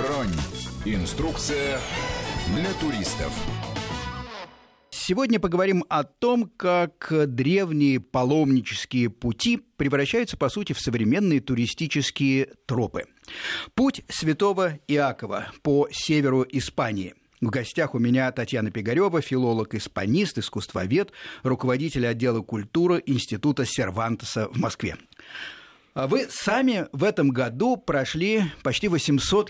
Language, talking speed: Russian, 95 wpm